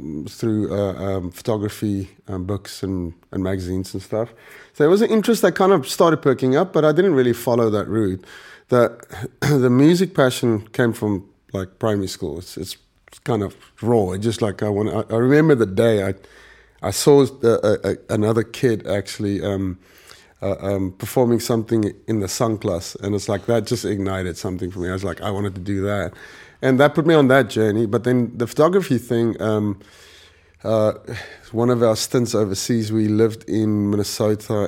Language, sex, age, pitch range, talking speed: English, male, 30-49, 95-130 Hz, 190 wpm